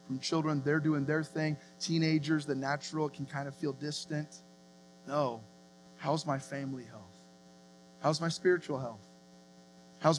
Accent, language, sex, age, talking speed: American, English, male, 20-39, 140 wpm